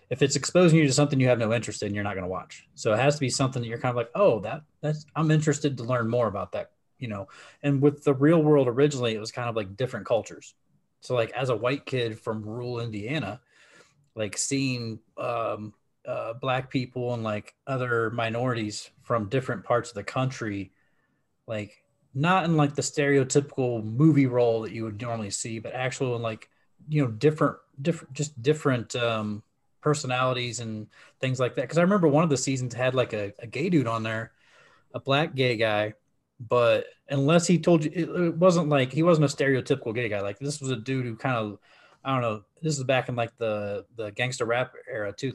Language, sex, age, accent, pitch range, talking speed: English, male, 30-49, American, 115-145 Hz, 215 wpm